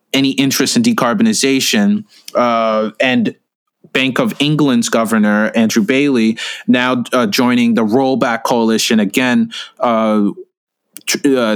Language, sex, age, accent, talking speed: English, male, 20-39, American, 110 wpm